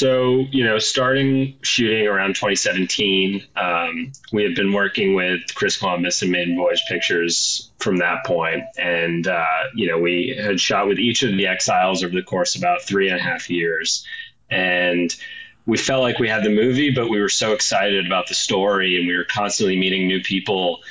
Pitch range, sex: 90-135 Hz, male